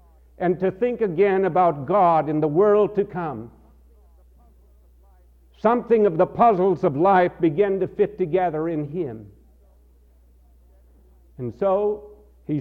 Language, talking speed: English, 125 wpm